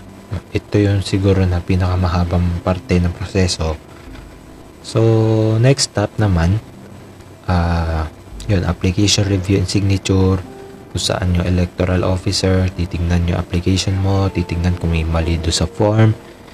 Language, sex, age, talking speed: Filipino, male, 20-39, 125 wpm